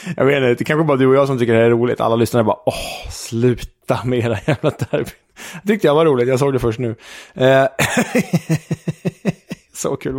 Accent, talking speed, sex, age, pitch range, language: Norwegian, 190 wpm, male, 20-39, 120-150 Hz, Swedish